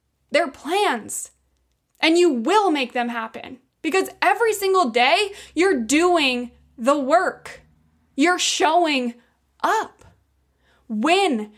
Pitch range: 240-355 Hz